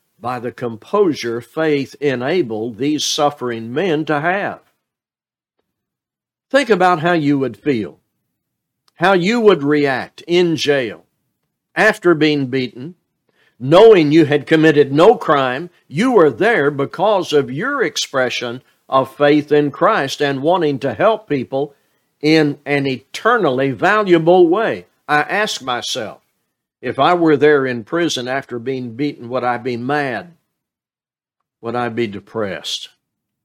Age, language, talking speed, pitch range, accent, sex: 60-79, English, 130 wpm, 125-160 Hz, American, male